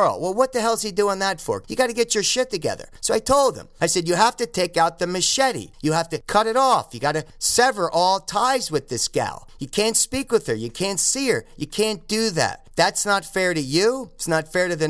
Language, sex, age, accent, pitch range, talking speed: English, male, 40-59, American, 140-200 Hz, 270 wpm